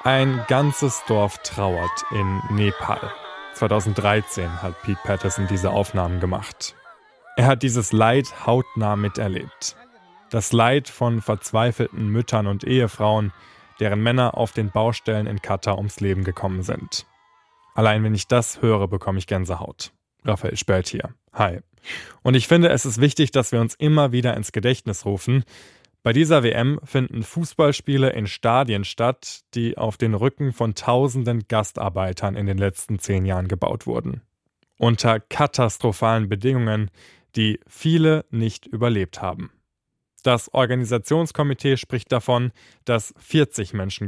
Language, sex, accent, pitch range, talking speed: German, male, German, 100-125 Hz, 135 wpm